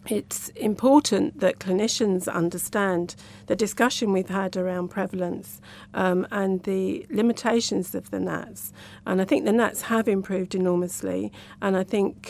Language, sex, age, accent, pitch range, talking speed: English, female, 50-69, British, 175-215 Hz, 140 wpm